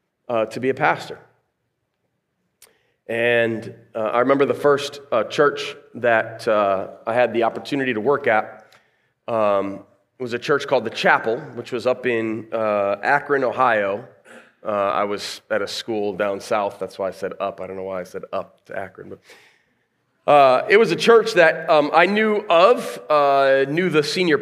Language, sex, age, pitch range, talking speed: English, male, 30-49, 115-150 Hz, 180 wpm